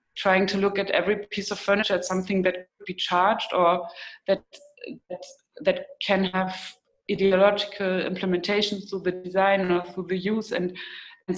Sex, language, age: female, English, 20-39